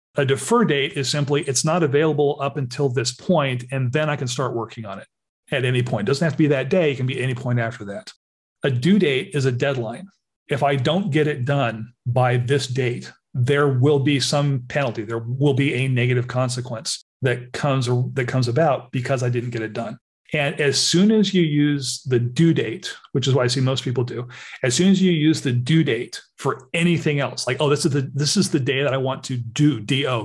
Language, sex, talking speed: English, male, 230 wpm